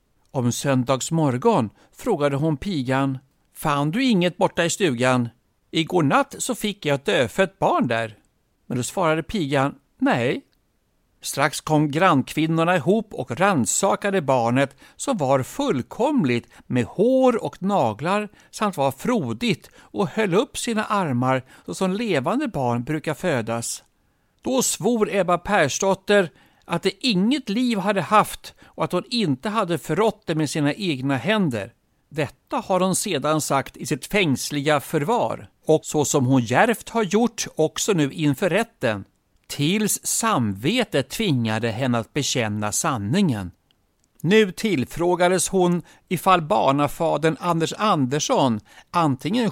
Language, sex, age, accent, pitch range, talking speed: Swedish, male, 60-79, native, 135-200 Hz, 130 wpm